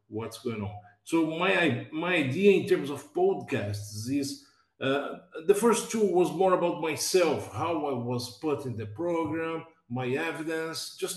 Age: 50-69